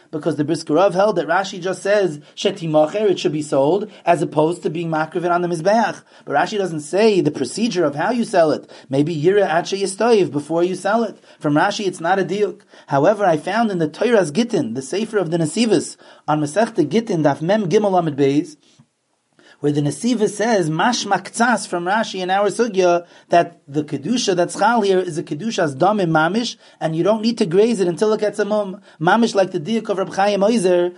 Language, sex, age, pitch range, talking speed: English, male, 30-49, 165-210 Hz, 205 wpm